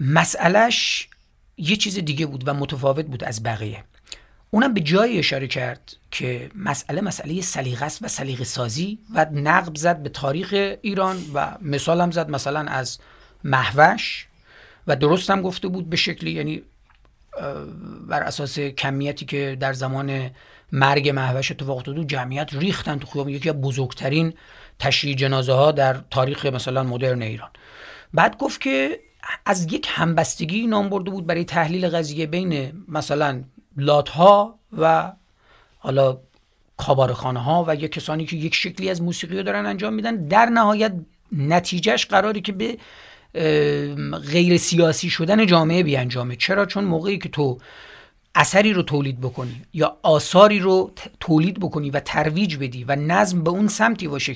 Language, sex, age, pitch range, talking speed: Persian, male, 40-59, 135-180 Hz, 150 wpm